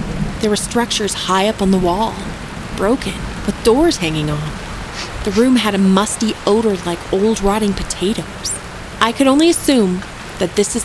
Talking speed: 165 wpm